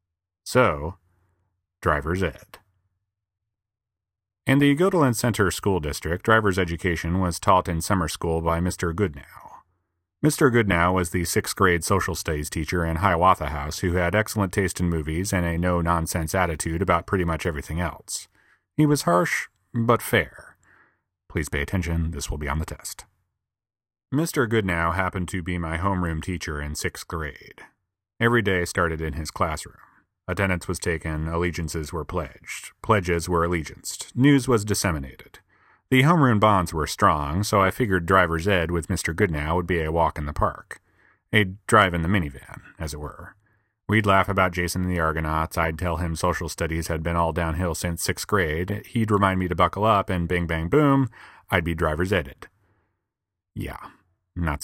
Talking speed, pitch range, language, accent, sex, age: 165 wpm, 85-100 Hz, English, American, male, 30-49